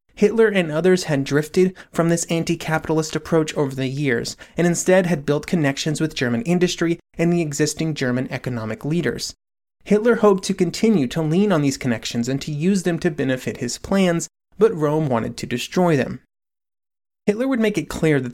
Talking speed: 180 wpm